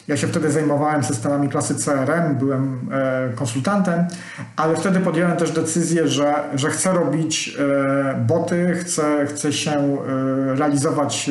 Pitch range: 145-185 Hz